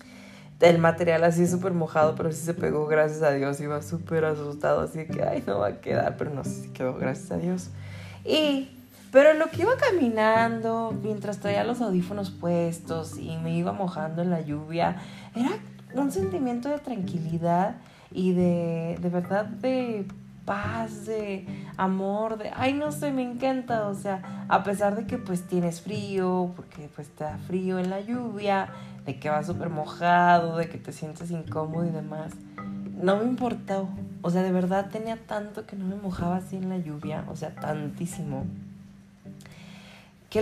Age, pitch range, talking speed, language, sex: 20-39, 165-210 Hz, 170 wpm, Spanish, female